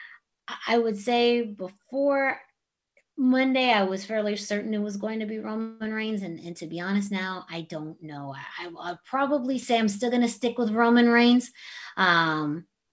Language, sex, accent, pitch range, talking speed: English, female, American, 160-205 Hz, 175 wpm